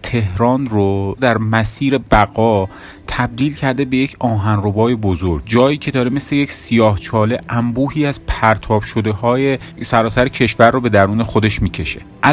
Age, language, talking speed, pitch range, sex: 30-49, Persian, 140 wpm, 100-125 Hz, male